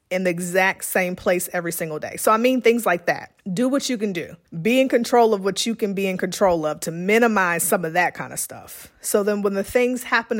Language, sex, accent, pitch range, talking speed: English, female, American, 165-200 Hz, 255 wpm